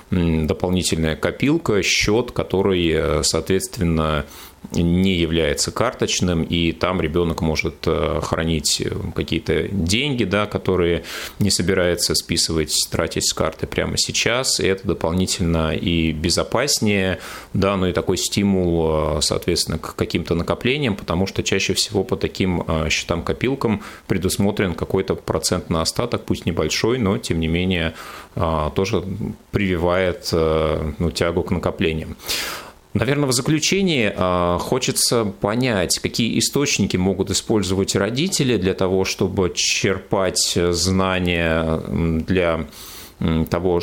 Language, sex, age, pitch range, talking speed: Russian, male, 30-49, 80-100 Hz, 110 wpm